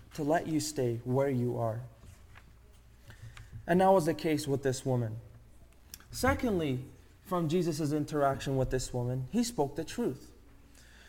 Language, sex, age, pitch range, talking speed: English, male, 20-39, 115-180 Hz, 140 wpm